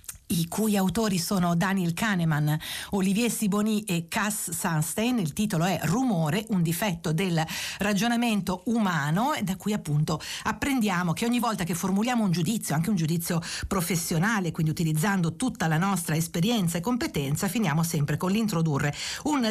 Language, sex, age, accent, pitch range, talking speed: Italian, female, 50-69, native, 165-205 Hz, 150 wpm